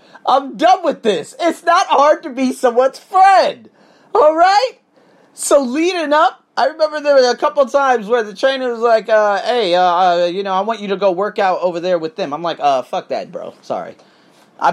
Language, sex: English, male